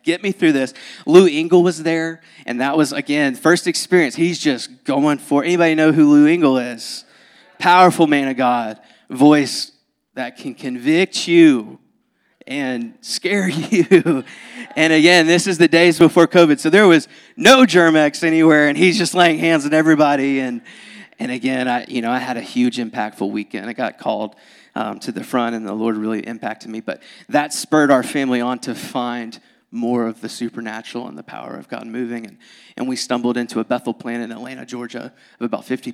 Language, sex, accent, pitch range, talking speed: English, male, American, 120-165 Hz, 190 wpm